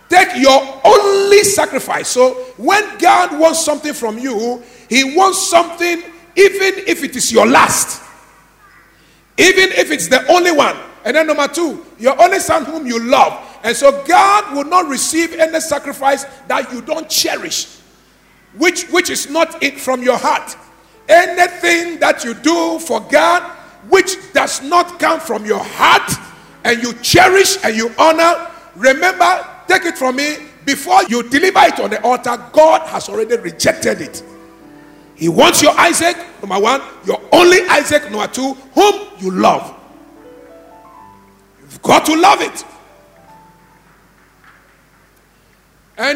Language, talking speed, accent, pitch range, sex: English, 145 wpm, Nigerian, 260-360 Hz, male